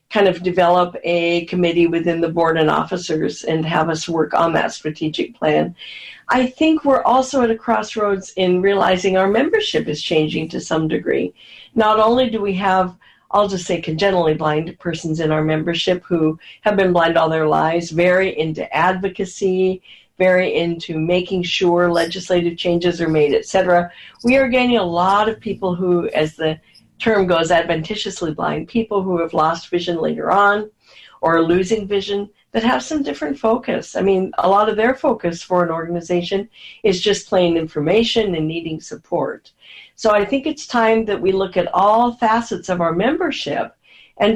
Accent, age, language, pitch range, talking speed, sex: American, 50-69, English, 170-215 Hz, 175 wpm, female